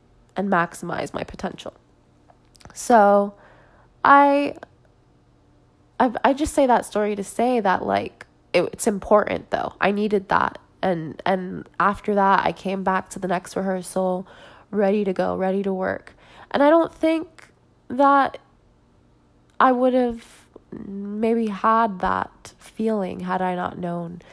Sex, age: female, 20-39